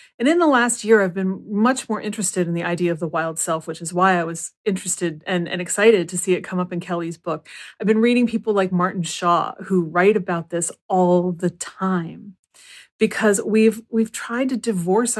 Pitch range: 180-225 Hz